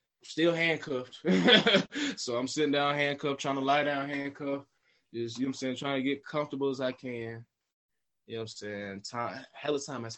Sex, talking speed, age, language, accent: male, 205 wpm, 20-39, English, American